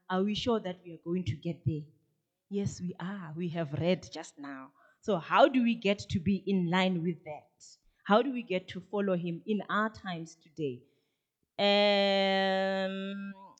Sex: female